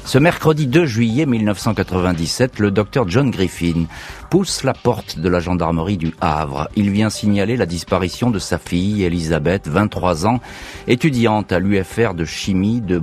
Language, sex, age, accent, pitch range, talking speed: French, male, 50-69, French, 85-120 Hz, 155 wpm